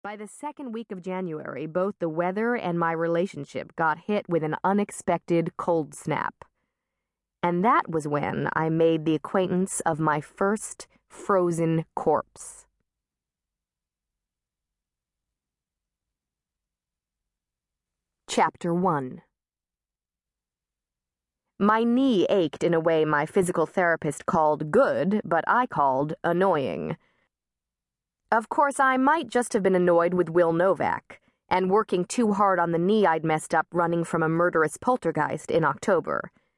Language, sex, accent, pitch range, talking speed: English, female, American, 155-205 Hz, 125 wpm